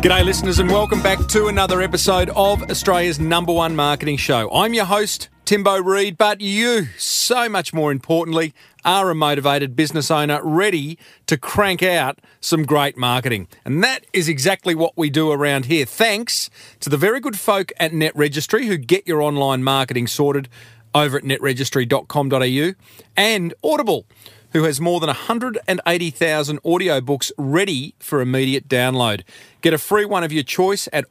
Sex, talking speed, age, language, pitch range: male, 160 wpm, 40-59, English, 140-190 Hz